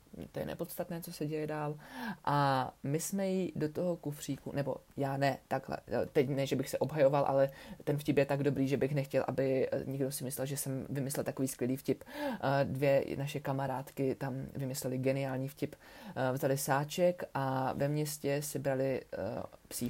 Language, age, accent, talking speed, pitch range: Czech, 30-49, native, 175 wpm, 140-165 Hz